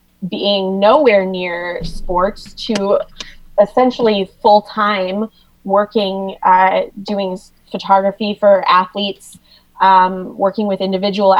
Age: 20-39